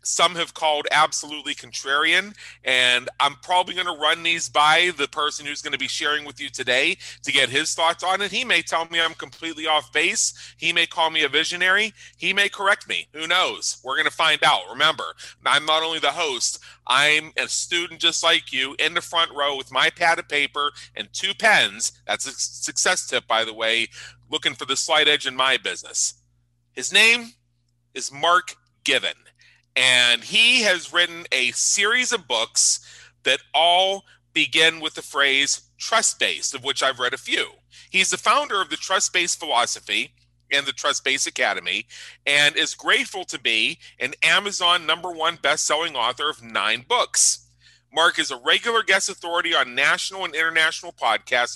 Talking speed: 180 wpm